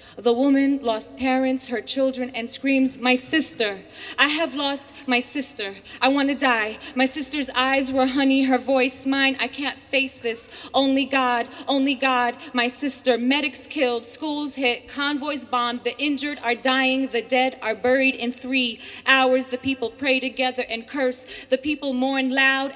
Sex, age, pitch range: female, 30-49, 235-270 Hz